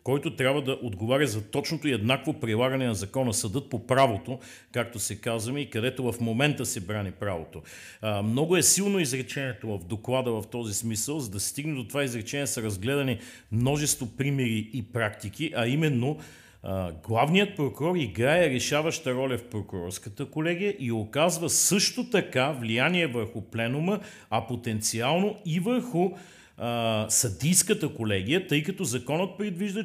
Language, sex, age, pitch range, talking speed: Bulgarian, male, 40-59, 115-155 Hz, 145 wpm